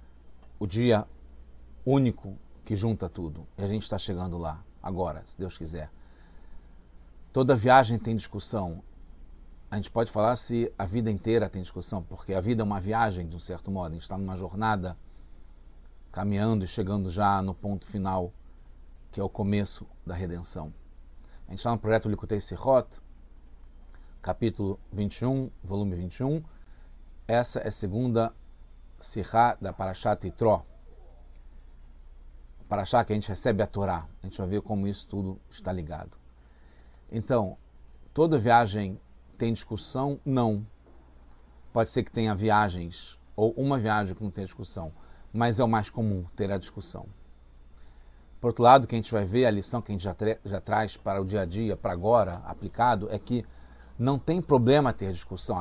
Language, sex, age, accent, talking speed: English, male, 40-59, Brazilian, 165 wpm